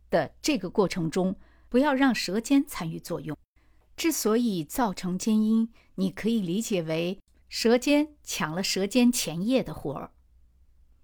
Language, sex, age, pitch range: Chinese, female, 50-69, 180-260 Hz